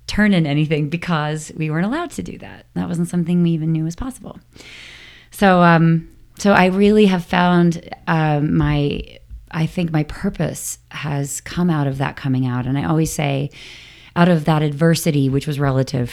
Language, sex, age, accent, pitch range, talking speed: English, female, 30-49, American, 135-180 Hz, 180 wpm